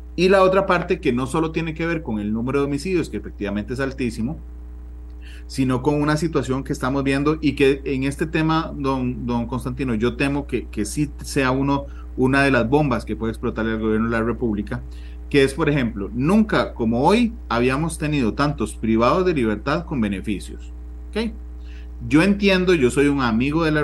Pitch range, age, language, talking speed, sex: 105-145 Hz, 30-49, Spanish, 195 wpm, male